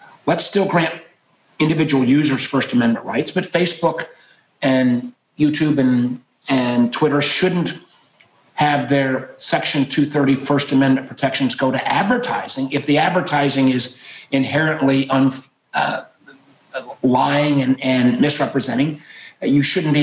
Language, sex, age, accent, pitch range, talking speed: English, male, 40-59, American, 130-155 Hz, 120 wpm